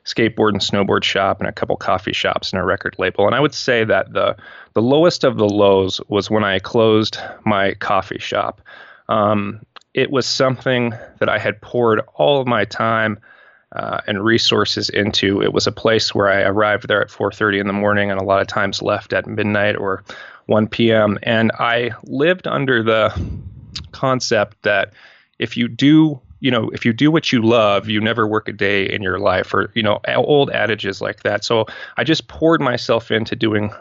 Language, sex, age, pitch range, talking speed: English, male, 30-49, 100-115 Hz, 195 wpm